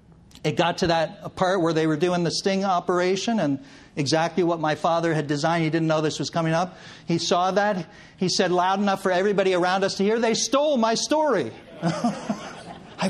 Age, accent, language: 50-69, American, English